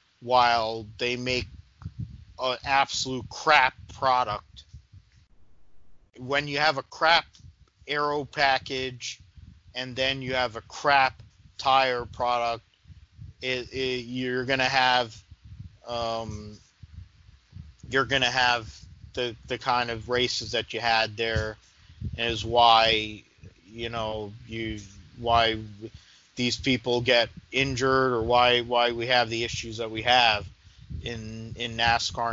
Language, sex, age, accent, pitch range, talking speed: English, male, 40-59, American, 105-120 Hz, 115 wpm